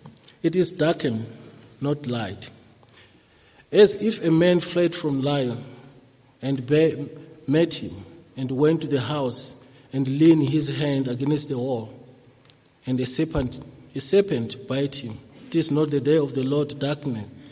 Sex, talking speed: male, 145 wpm